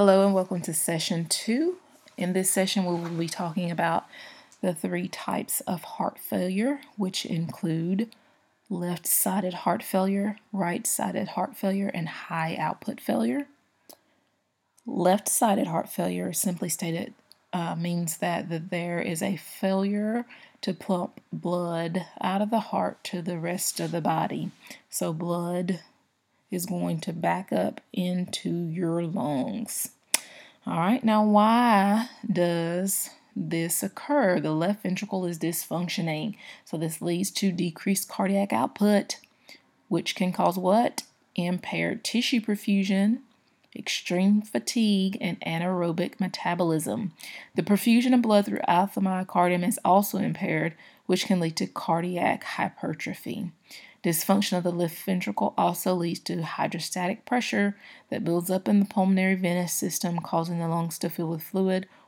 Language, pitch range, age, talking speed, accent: English, 175-205 Hz, 30-49, 135 wpm, American